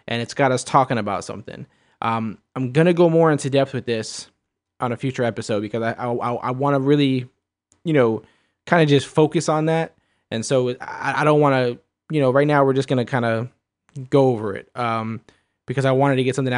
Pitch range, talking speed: 120-145 Hz, 230 wpm